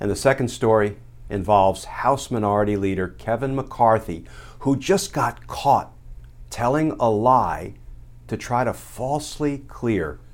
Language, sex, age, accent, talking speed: English, male, 50-69, American, 130 wpm